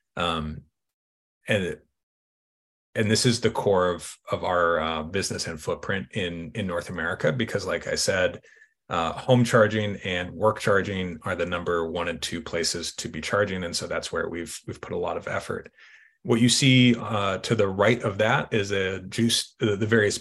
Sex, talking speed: male, 190 wpm